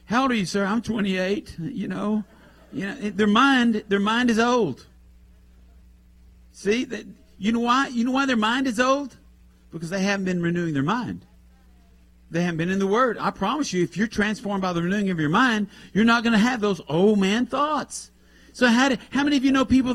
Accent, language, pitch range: American, English, 175-255 Hz